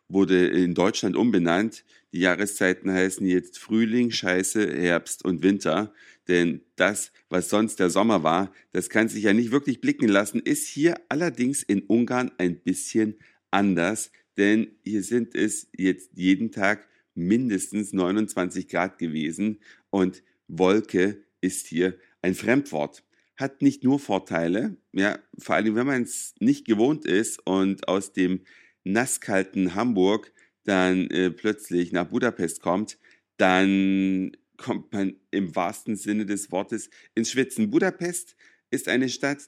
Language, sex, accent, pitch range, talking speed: German, male, German, 90-120 Hz, 135 wpm